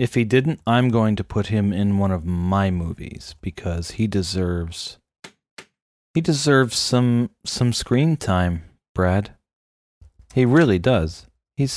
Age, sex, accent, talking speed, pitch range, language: 30-49, male, American, 140 wpm, 85-130 Hz, English